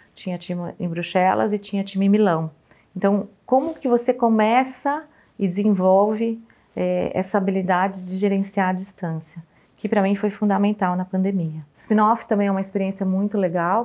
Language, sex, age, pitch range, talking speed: Portuguese, female, 30-49, 180-205 Hz, 165 wpm